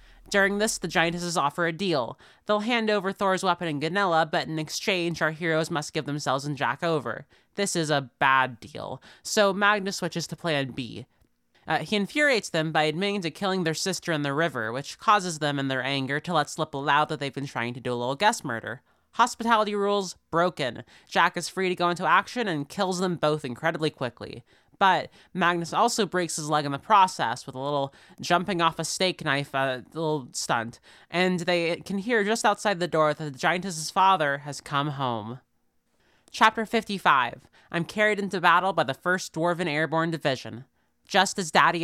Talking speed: 190 wpm